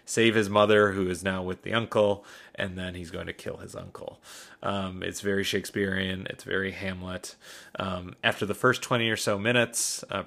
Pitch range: 95-105 Hz